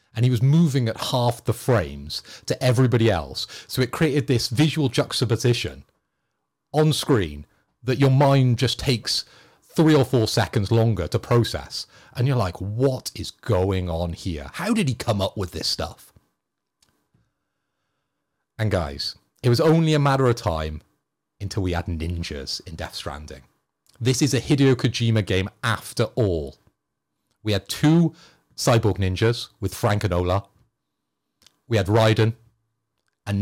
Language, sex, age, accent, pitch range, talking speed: English, male, 40-59, British, 95-125 Hz, 150 wpm